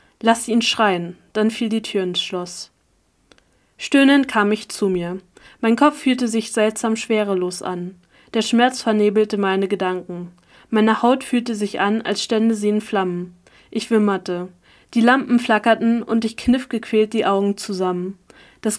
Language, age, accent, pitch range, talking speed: German, 20-39, German, 195-230 Hz, 155 wpm